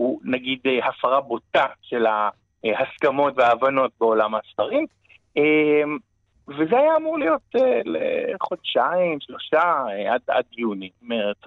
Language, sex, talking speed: Hebrew, male, 100 wpm